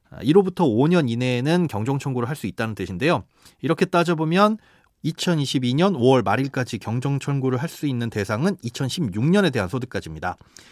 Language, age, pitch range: Korean, 30-49, 115-160 Hz